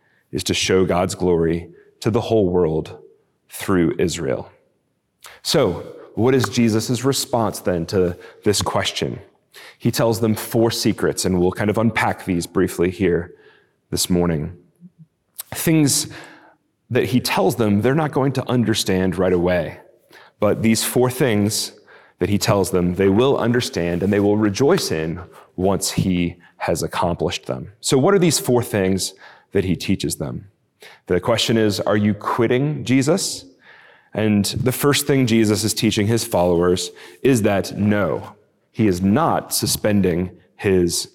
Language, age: English, 30-49